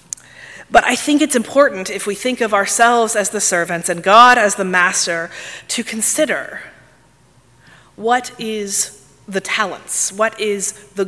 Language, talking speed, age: English, 145 wpm, 30-49